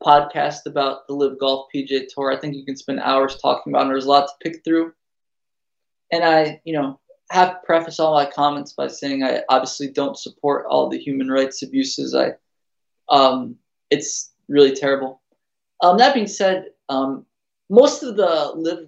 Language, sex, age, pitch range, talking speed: English, male, 20-39, 140-190 Hz, 180 wpm